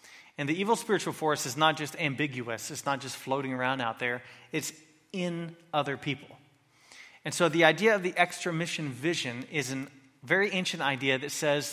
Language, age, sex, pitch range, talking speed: English, 30-49, male, 135-165 Hz, 185 wpm